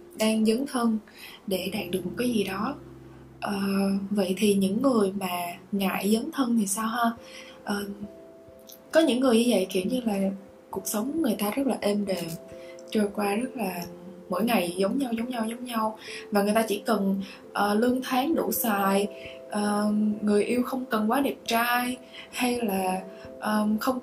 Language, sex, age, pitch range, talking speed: Vietnamese, female, 20-39, 190-235 Hz, 170 wpm